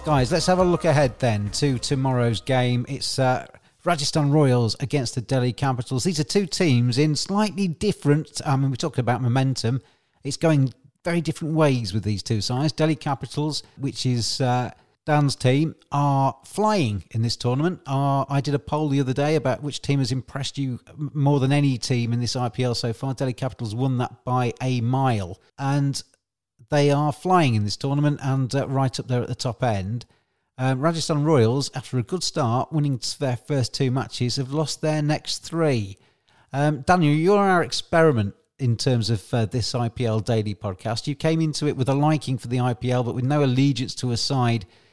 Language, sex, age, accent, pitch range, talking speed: English, male, 40-59, British, 120-150 Hz, 195 wpm